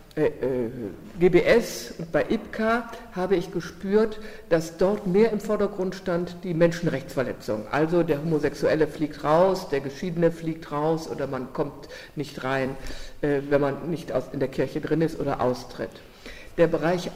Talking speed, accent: 145 wpm, German